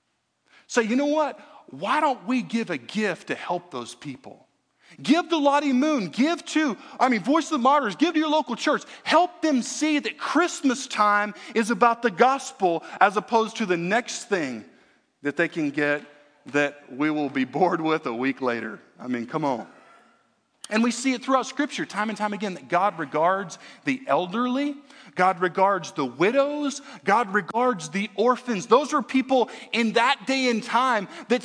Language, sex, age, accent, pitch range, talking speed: English, male, 40-59, American, 180-280 Hz, 185 wpm